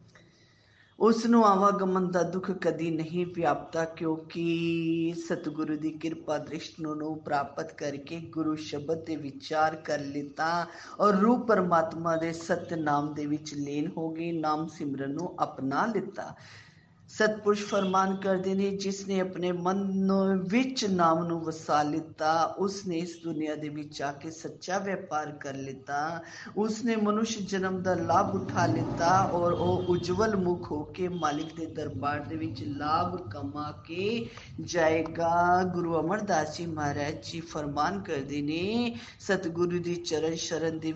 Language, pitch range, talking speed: Hindi, 150-180 Hz, 125 wpm